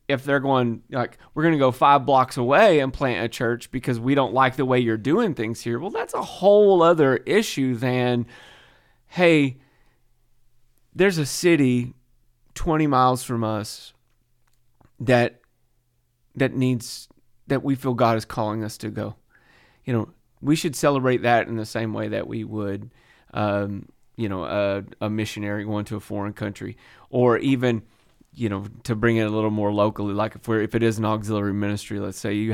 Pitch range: 105-125 Hz